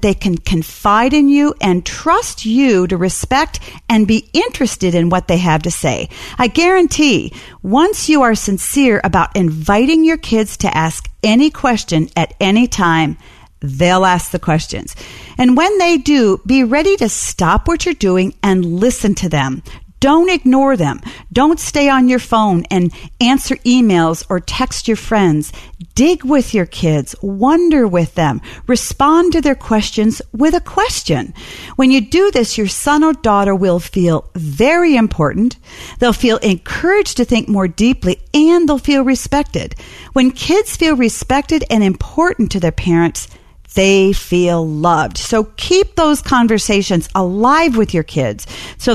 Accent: American